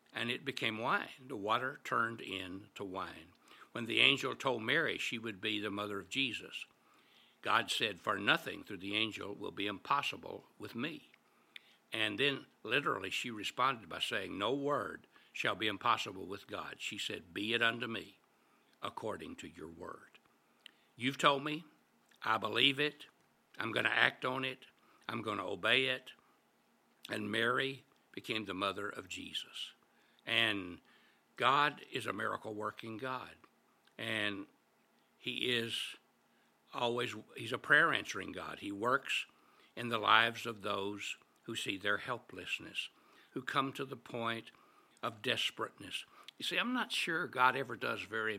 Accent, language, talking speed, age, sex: American, English, 150 wpm, 60-79, male